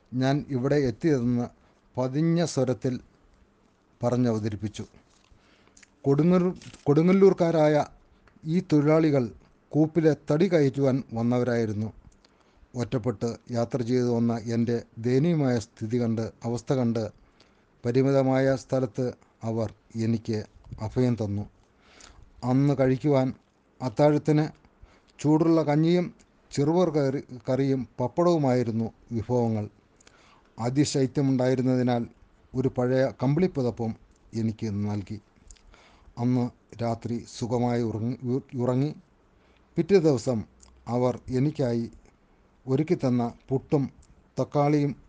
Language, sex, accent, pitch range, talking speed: Malayalam, male, native, 110-135 Hz, 35 wpm